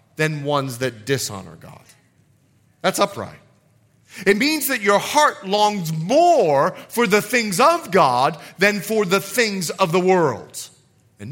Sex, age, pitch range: male, 40-59, 185-270 Hz